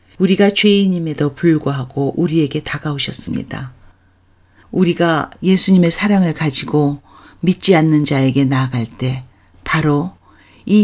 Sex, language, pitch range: female, Korean, 130-180 Hz